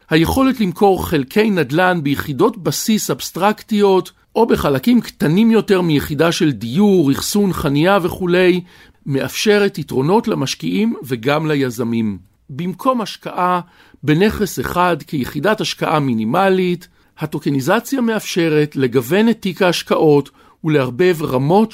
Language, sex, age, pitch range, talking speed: Hebrew, male, 50-69, 140-195 Hz, 100 wpm